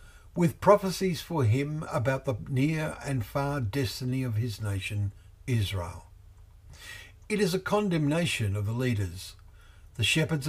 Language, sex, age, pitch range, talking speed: English, male, 60-79, 95-135 Hz, 130 wpm